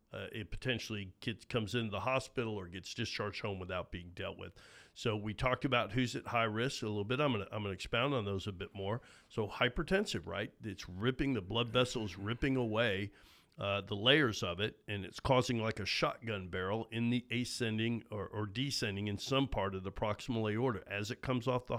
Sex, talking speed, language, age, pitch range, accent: male, 205 wpm, English, 50-69, 100-125 Hz, American